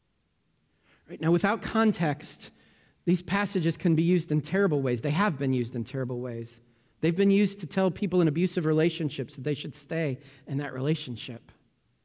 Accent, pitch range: American, 150-185 Hz